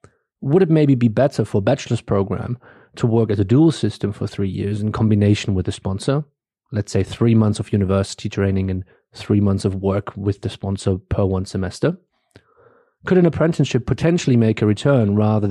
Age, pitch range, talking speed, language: 30-49, 105-145 Hz, 190 wpm, English